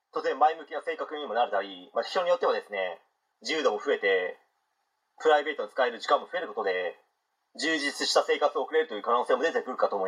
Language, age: Japanese, 40-59